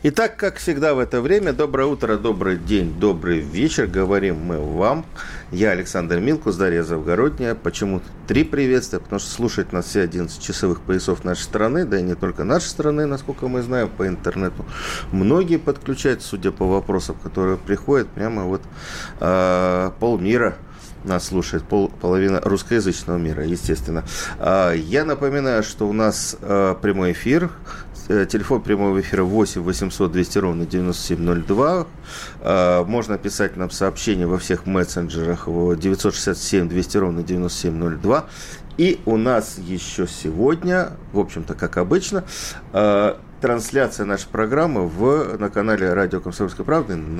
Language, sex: Russian, male